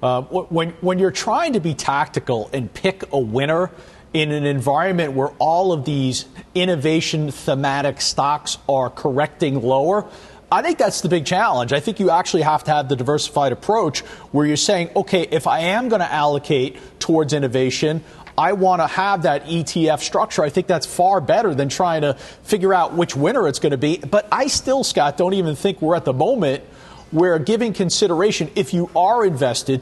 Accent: American